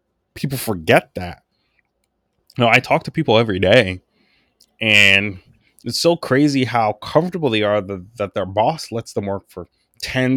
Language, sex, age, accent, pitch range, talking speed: English, male, 20-39, American, 105-140 Hz, 160 wpm